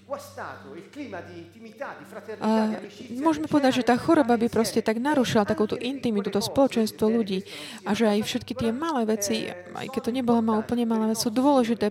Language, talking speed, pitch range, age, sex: Slovak, 155 wpm, 210-250 Hz, 20-39, female